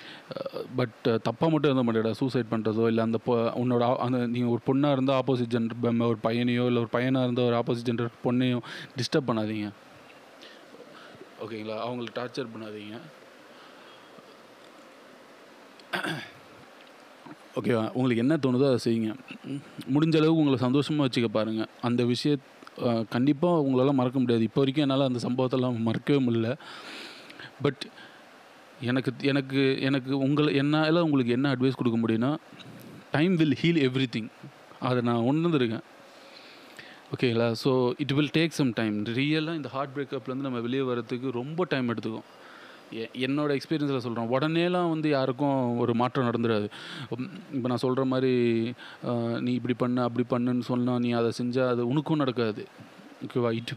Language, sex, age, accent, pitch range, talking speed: Tamil, male, 30-49, native, 120-140 Hz, 135 wpm